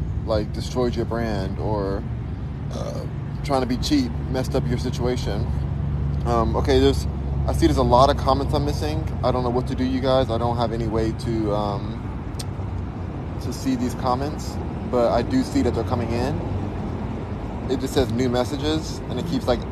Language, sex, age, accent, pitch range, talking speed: English, male, 20-39, American, 100-125 Hz, 190 wpm